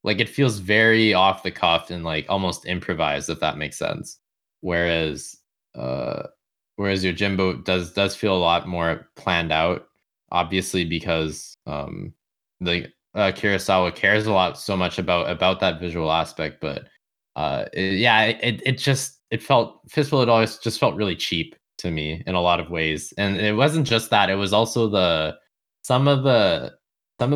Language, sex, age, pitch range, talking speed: English, male, 20-39, 90-120 Hz, 180 wpm